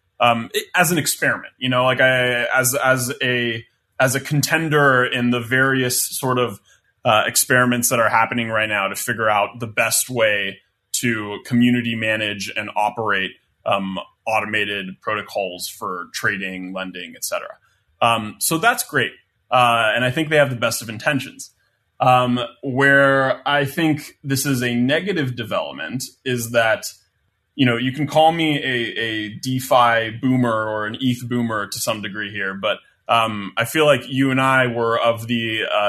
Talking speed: 165 wpm